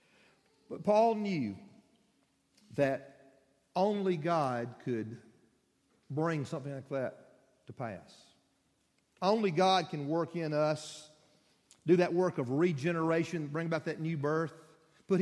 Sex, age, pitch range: male, 50-69, 135-175 Hz